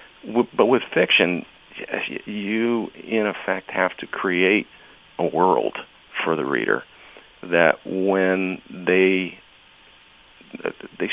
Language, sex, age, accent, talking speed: English, male, 50-69, American, 95 wpm